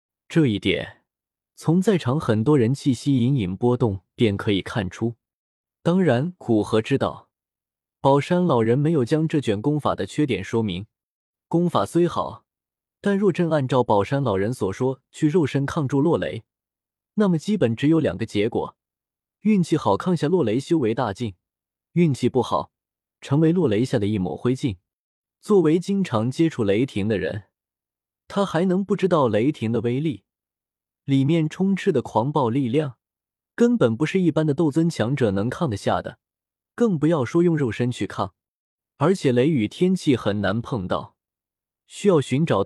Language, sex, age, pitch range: Chinese, male, 20-39, 110-165 Hz